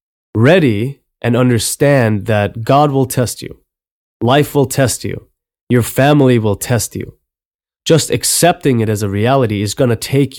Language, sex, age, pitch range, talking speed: English, male, 20-39, 100-130 Hz, 155 wpm